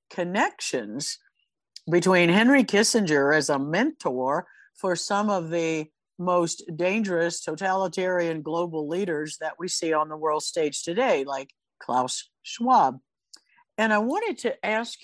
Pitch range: 160-205 Hz